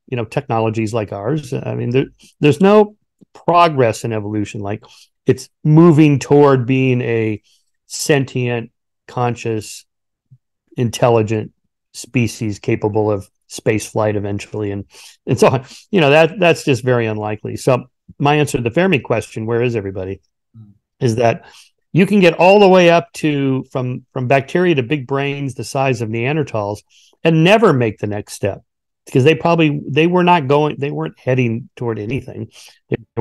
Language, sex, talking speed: English, male, 160 wpm